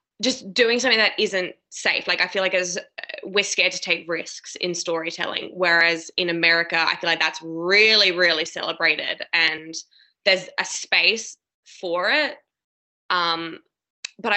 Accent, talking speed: Australian, 150 wpm